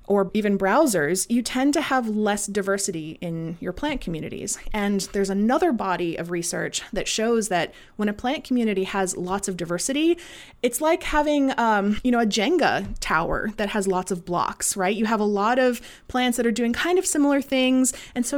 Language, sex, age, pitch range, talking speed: English, female, 30-49, 195-255 Hz, 195 wpm